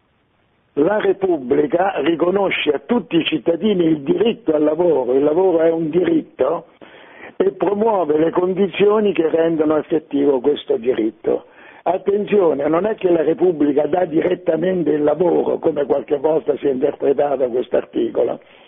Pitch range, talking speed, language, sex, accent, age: 150-225 Hz, 140 wpm, Italian, male, native, 60-79